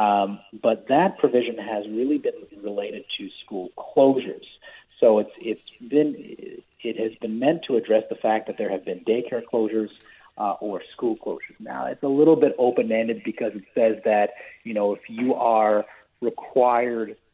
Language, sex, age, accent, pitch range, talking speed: English, male, 40-59, American, 105-125 Hz, 175 wpm